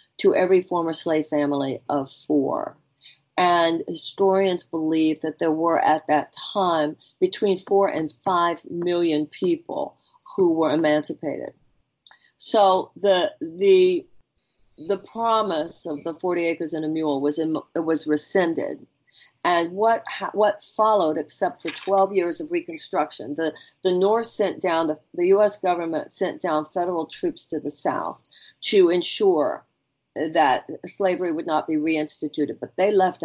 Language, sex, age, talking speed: English, female, 50-69, 140 wpm